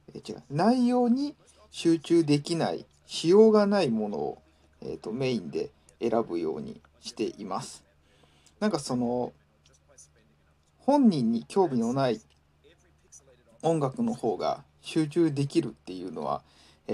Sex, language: male, Japanese